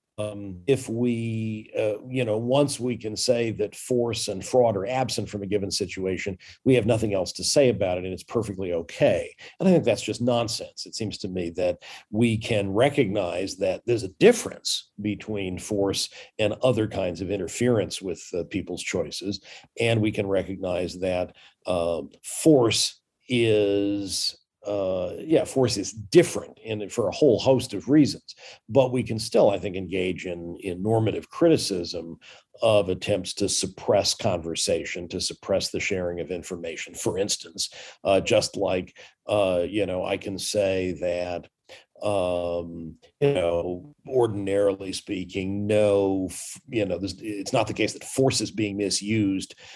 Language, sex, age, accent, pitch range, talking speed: English, male, 50-69, American, 95-115 Hz, 160 wpm